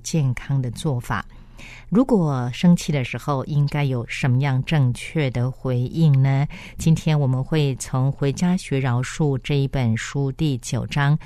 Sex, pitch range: female, 125-160 Hz